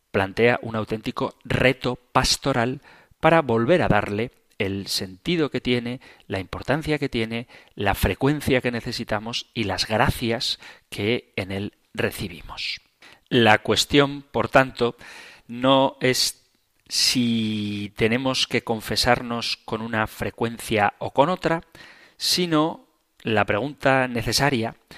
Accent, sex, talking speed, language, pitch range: Spanish, male, 115 wpm, Spanish, 105-130 Hz